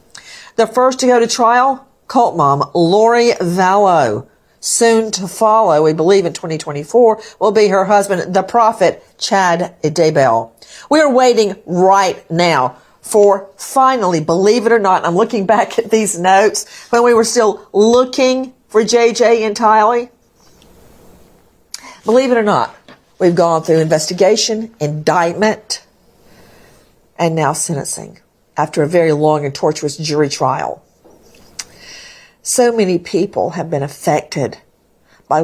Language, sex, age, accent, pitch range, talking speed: English, female, 50-69, American, 155-220 Hz, 130 wpm